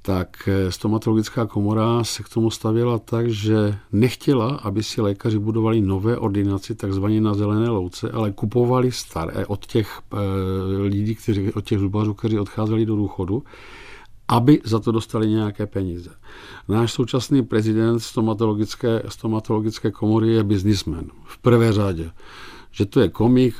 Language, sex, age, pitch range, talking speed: Czech, male, 50-69, 100-110 Hz, 140 wpm